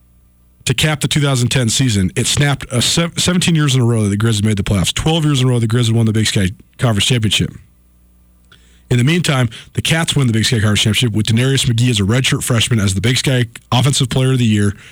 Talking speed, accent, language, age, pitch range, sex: 240 wpm, American, English, 40-59, 115-145 Hz, male